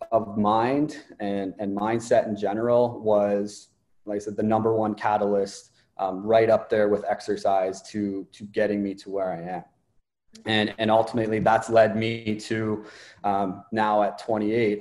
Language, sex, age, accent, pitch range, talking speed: English, male, 20-39, American, 105-115 Hz, 160 wpm